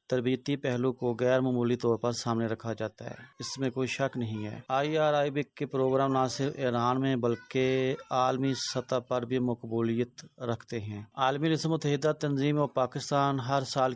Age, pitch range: 30-49, 120-135 Hz